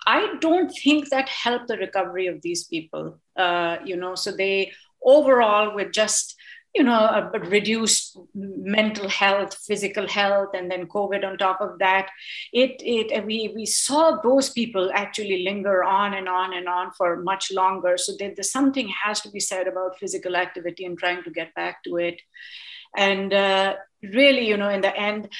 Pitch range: 185-225 Hz